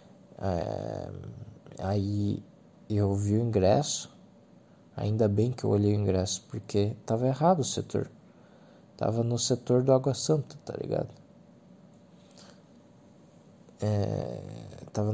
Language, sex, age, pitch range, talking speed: Portuguese, male, 20-39, 105-130 Hz, 105 wpm